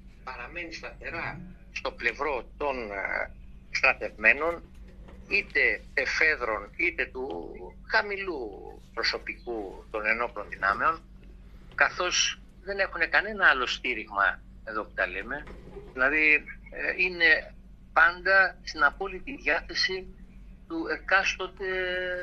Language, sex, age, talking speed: Greek, male, 60-79, 90 wpm